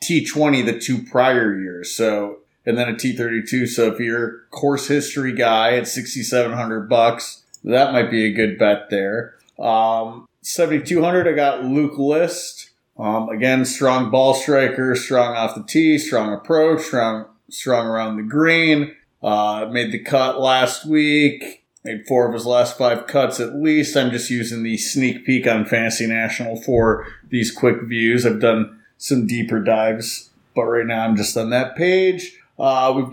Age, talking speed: 30-49, 165 wpm